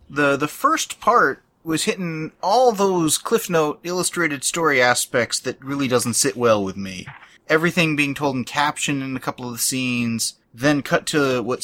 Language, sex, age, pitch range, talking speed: English, male, 30-49, 120-150 Hz, 180 wpm